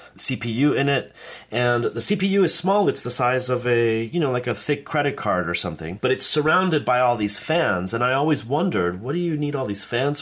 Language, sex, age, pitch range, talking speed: English, male, 30-49, 100-140 Hz, 235 wpm